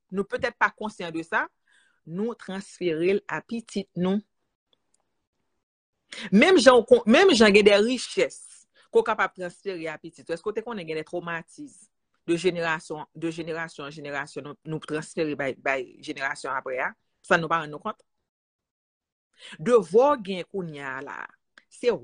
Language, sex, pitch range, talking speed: French, female, 165-235 Hz, 130 wpm